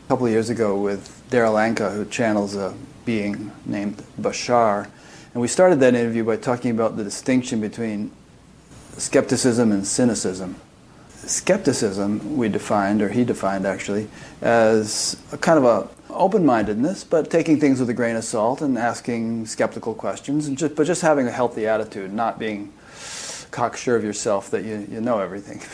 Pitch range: 105-125 Hz